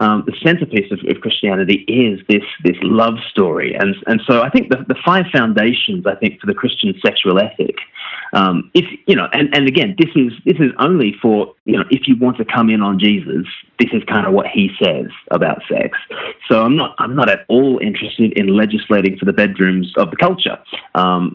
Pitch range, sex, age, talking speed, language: 100-130 Hz, male, 30-49, 215 wpm, English